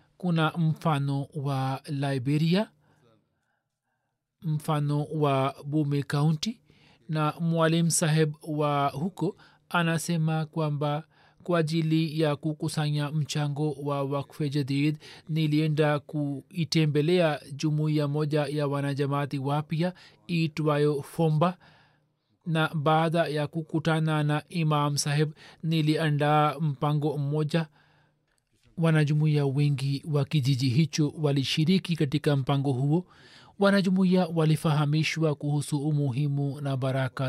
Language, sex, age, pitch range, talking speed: Swahili, male, 40-59, 140-160 Hz, 95 wpm